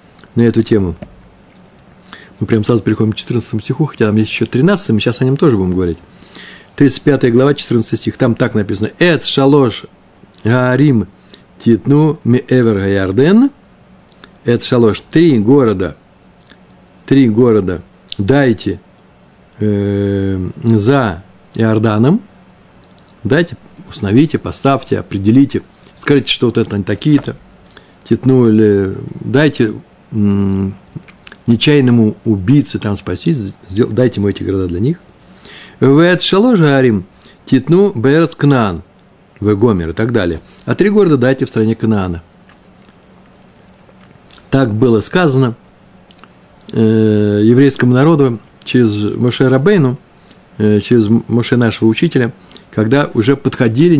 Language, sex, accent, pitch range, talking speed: Russian, male, native, 105-135 Hz, 105 wpm